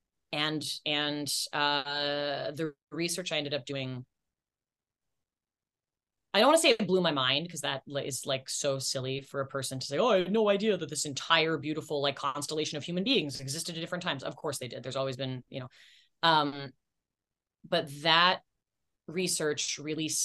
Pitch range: 140-185 Hz